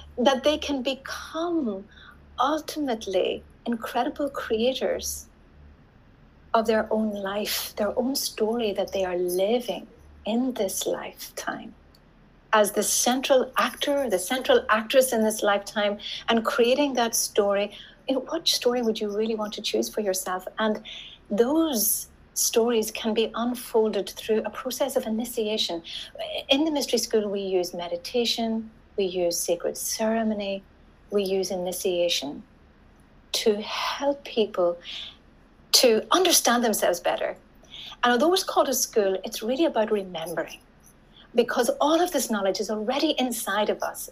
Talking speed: 130 wpm